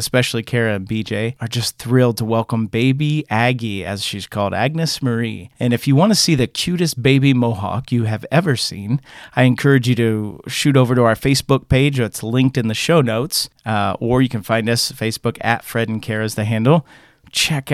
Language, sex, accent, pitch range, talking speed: English, male, American, 115-135 Hz, 205 wpm